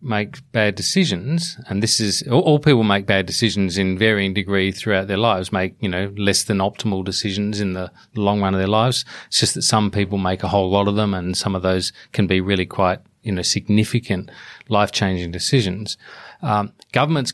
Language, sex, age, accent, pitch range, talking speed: English, male, 40-59, Australian, 100-125 Hz, 195 wpm